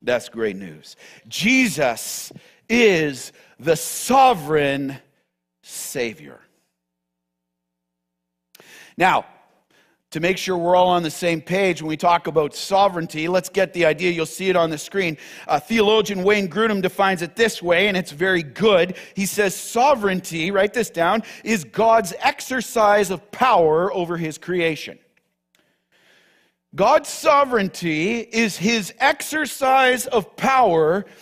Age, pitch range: 50-69, 175-235 Hz